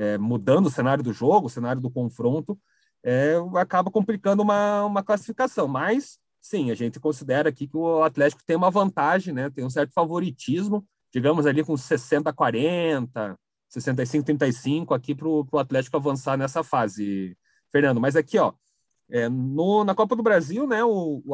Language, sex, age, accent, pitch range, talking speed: Portuguese, male, 40-59, Brazilian, 130-190 Hz, 150 wpm